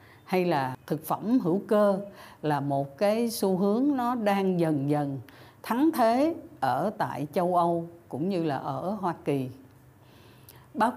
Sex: female